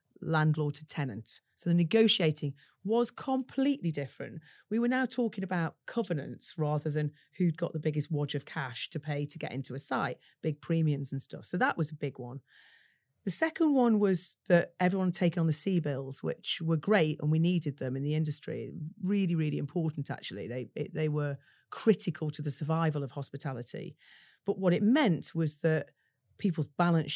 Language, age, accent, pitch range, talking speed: English, 40-59, British, 150-185 Hz, 185 wpm